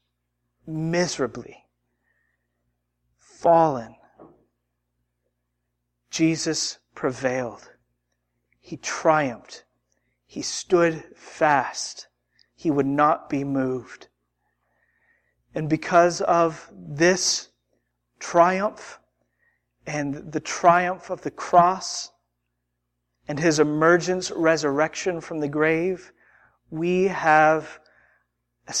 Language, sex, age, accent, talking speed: English, male, 40-59, American, 75 wpm